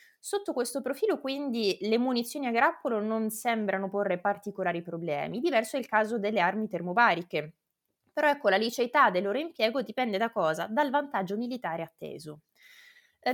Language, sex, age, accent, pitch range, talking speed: Italian, female, 20-39, native, 185-265 Hz, 160 wpm